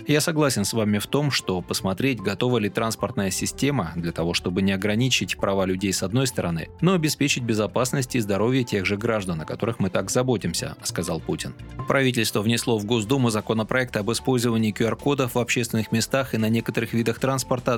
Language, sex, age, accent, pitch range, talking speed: Russian, male, 30-49, native, 105-130 Hz, 180 wpm